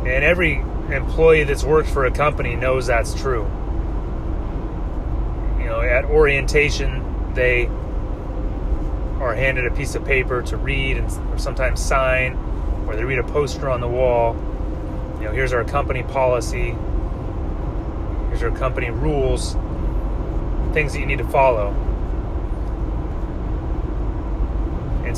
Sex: male